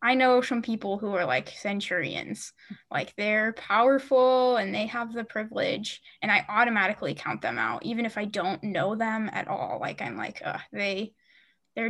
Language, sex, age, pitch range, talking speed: English, female, 10-29, 205-245 Hz, 180 wpm